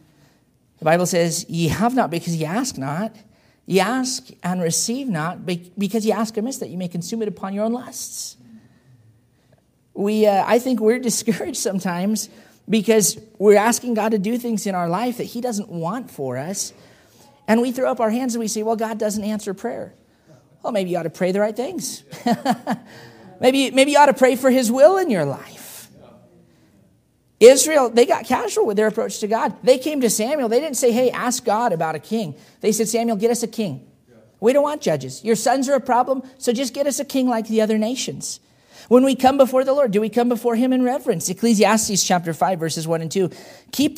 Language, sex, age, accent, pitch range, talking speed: English, male, 40-59, American, 195-250 Hz, 210 wpm